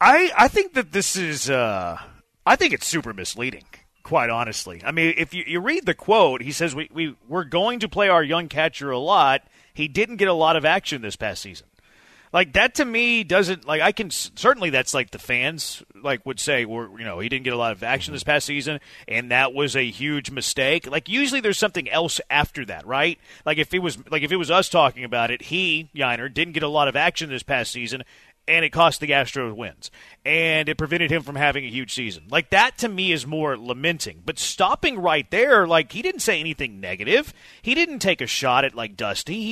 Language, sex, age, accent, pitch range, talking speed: English, male, 30-49, American, 130-185 Hz, 235 wpm